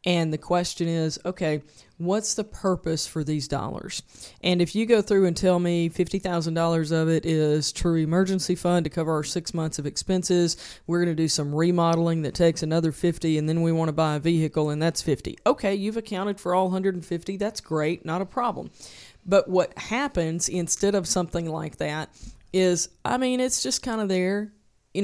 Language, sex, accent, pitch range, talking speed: English, female, American, 160-190 Hz, 195 wpm